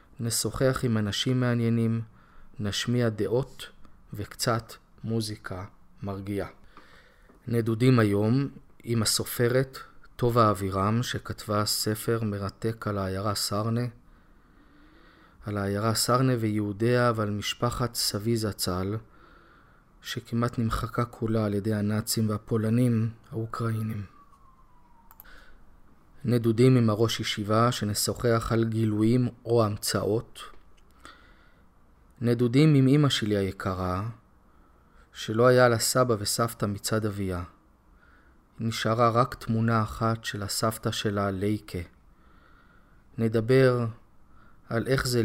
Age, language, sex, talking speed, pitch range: 30-49, Hebrew, male, 90 wpm, 105-120 Hz